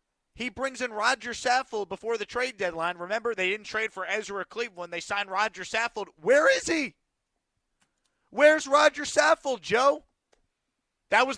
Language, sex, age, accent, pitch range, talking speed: English, male, 30-49, American, 190-245 Hz, 155 wpm